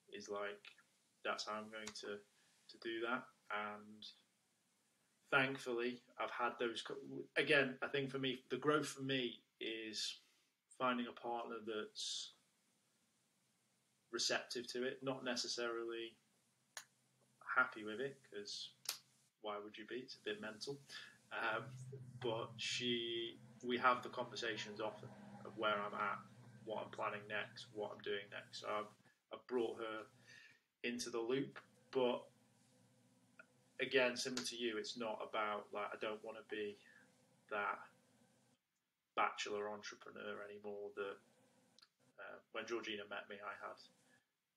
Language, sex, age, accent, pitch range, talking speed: English, male, 20-39, British, 105-130 Hz, 135 wpm